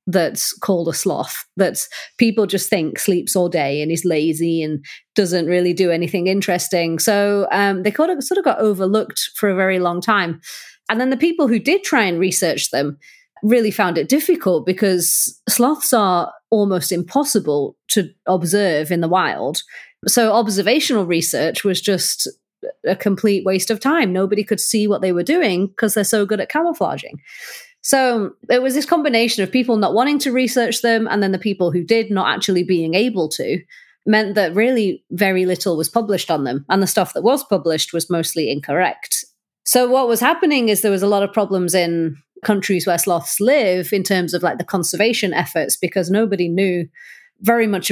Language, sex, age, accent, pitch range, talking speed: English, female, 30-49, British, 175-230 Hz, 185 wpm